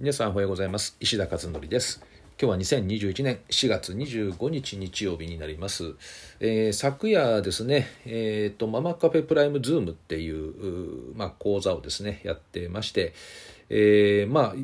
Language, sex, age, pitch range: Japanese, male, 40-59, 90-145 Hz